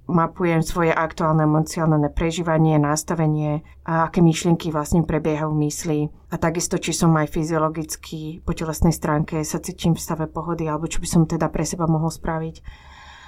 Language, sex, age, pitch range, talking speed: Slovak, female, 30-49, 155-175 Hz, 165 wpm